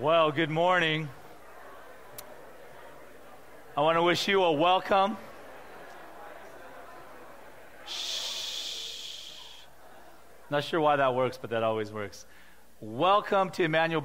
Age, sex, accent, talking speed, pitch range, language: 40-59, male, American, 100 wpm, 135-175 Hz, English